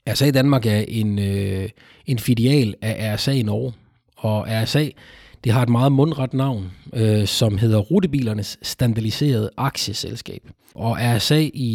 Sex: male